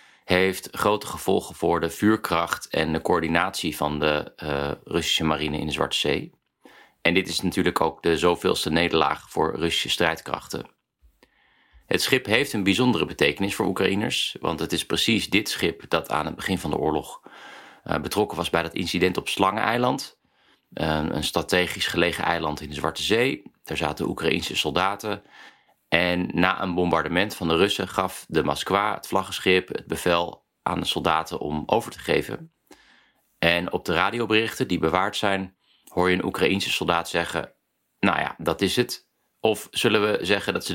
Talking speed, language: 170 wpm, Dutch